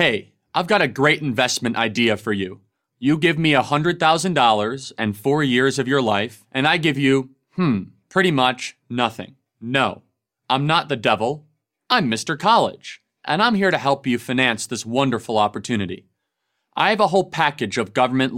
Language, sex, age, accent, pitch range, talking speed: English, male, 30-49, American, 125-175 Hz, 170 wpm